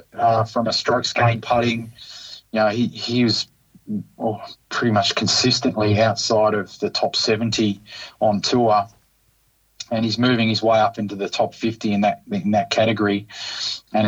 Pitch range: 110-120 Hz